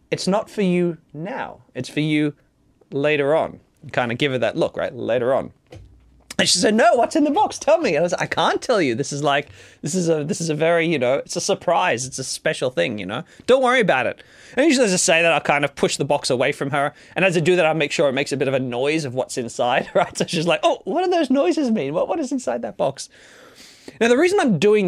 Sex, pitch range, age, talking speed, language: male, 145-200 Hz, 20-39, 280 wpm, English